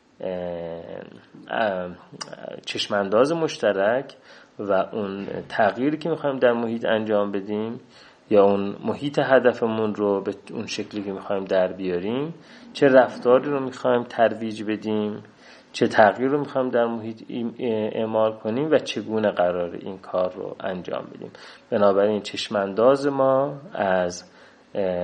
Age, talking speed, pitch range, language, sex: 30-49, 125 wpm, 100-125 Hz, Persian, male